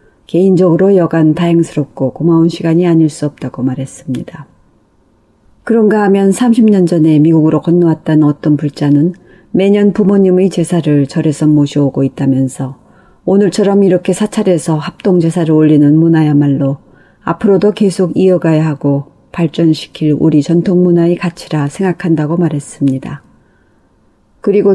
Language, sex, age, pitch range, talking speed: English, female, 40-59, 155-190 Hz, 100 wpm